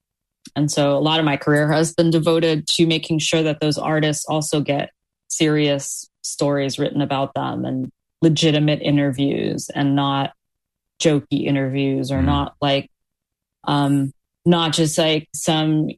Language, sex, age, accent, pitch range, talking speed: English, female, 20-39, American, 140-155 Hz, 145 wpm